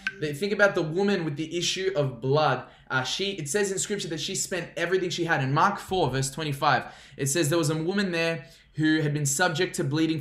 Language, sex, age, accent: English, male, 10-29, Australian